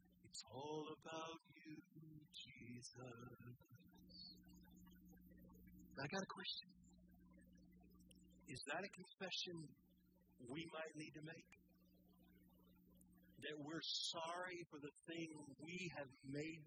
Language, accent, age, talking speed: English, American, 60-79, 95 wpm